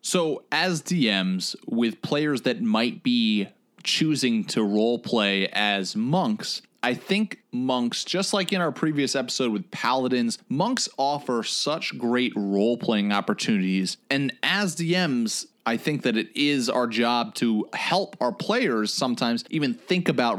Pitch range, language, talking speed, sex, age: 115-185 Hz, English, 145 wpm, male, 30-49